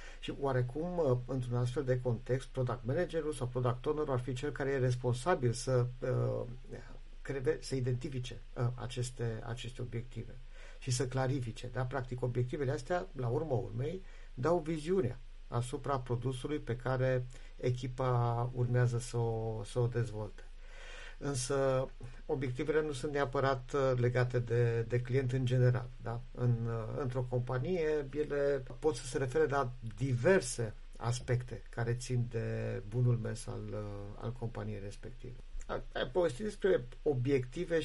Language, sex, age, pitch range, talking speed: Romanian, male, 50-69, 120-135 Hz, 130 wpm